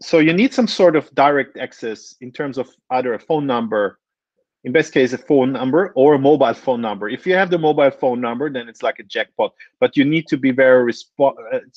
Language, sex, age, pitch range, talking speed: English, male, 30-49, 115-155 Hz, 230 wpm